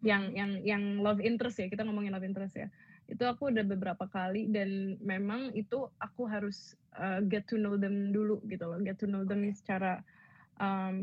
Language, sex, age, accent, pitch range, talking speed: Indonesian, female, 20-39, native, 195-215 Hz, 190 wpm